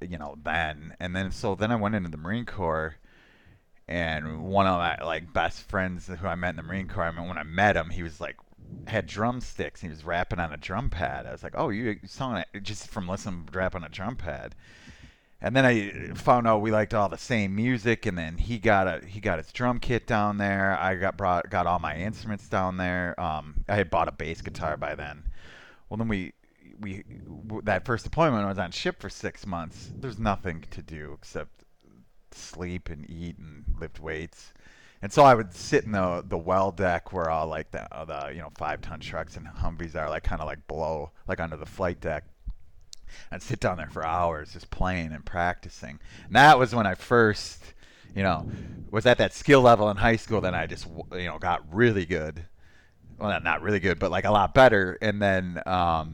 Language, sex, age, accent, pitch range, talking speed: English, male, 30-49, American, 80-105 Hz, 220 wpm